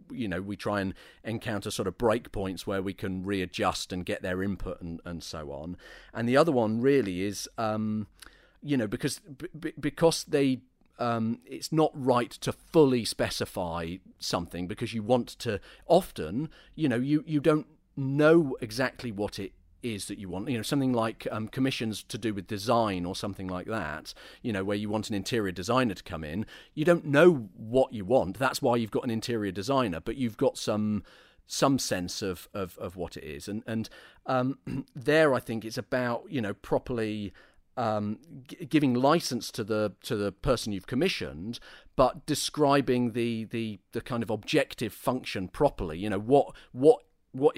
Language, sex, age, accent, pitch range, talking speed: English, male, 40-59, British, 100-130 Hz, 185 wpm